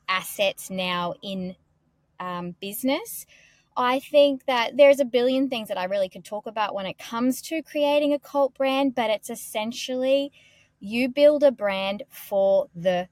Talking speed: 160 wpm